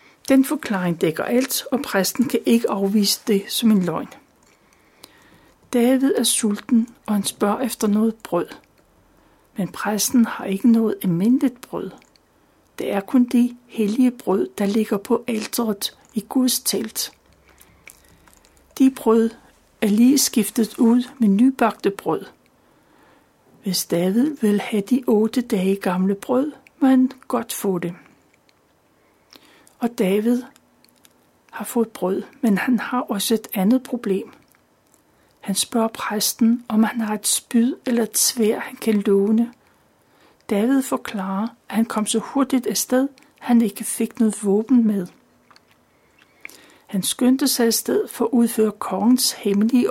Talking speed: 140 wpm